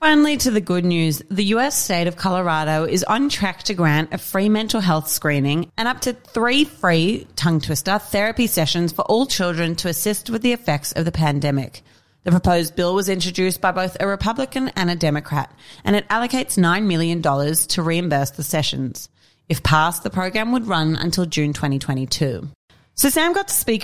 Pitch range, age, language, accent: 155-205 Hz, 30-49, English, Australian